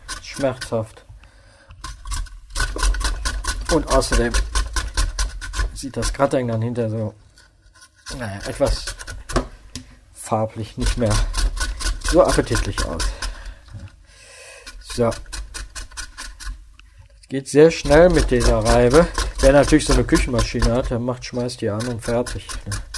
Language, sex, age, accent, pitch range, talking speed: German, male, 50-69, German, 110-135 Hz, 95 wpm